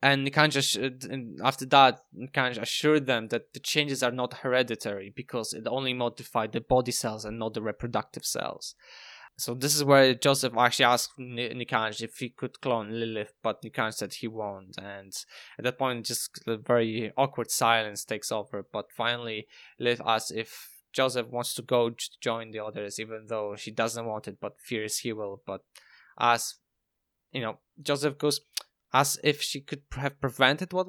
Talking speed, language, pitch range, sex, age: 175 wpm, English, 110-135 Hz, male, 10-29